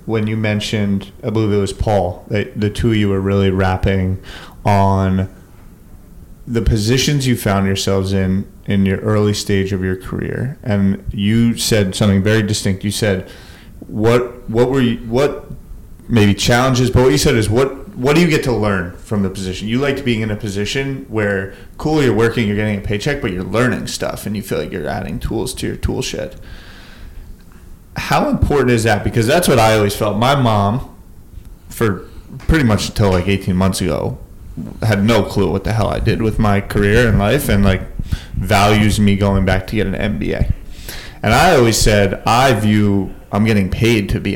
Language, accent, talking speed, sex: English, American, 195 wpm, male